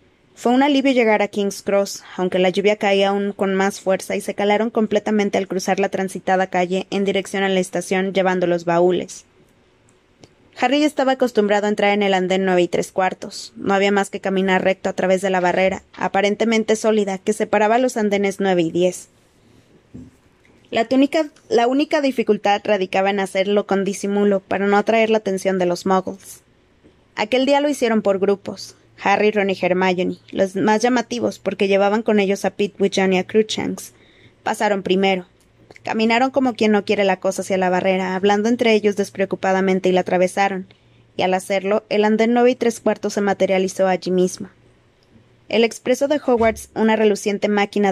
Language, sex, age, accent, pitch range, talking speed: Spanish, female, 20-39, Mexican, 190-215 Hz, 180 wpm